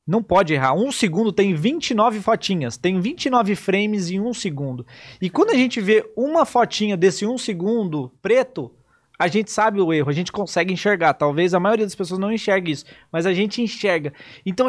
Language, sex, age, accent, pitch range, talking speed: Portuguese, male, 20-39, Brazilian, 155-220 Hz, 190 wpm